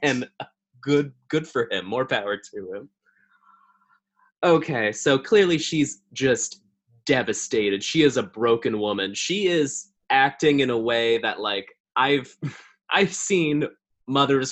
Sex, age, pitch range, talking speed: male, 20-39, 115-160 Hz, 130 wpm